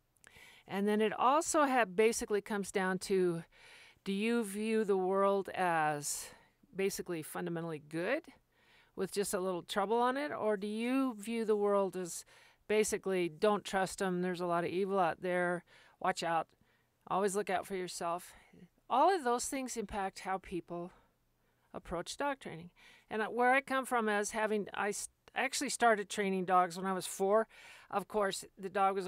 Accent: American